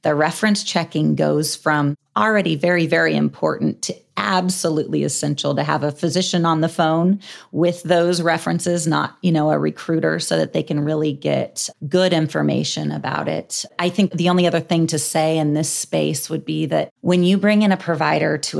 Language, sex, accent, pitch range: English, female, American, 145-175 Hz